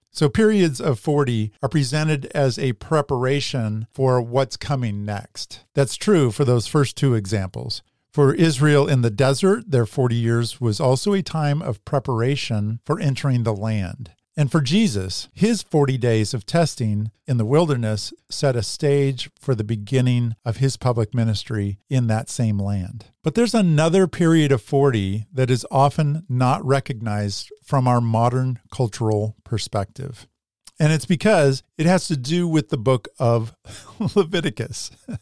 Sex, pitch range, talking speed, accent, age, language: male, 115-155 Hz, 155 wpm, American, 50-69, English